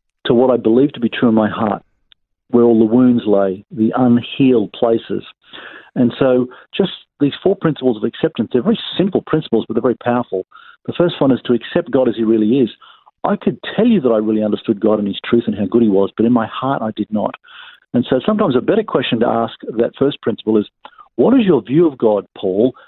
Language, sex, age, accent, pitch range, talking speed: English, male, 50-69, Australian, 110-140 Hz, 230 wpm